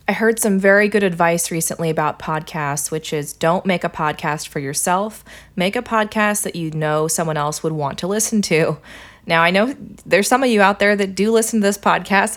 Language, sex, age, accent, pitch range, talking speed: English, female, 20-39, American, 160-195 Hz, 220 wpm